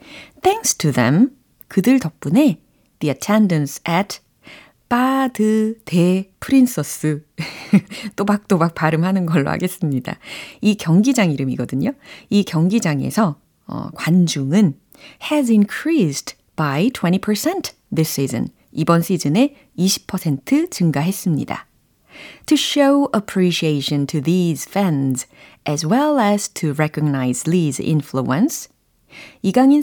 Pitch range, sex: 155-245 Hz, female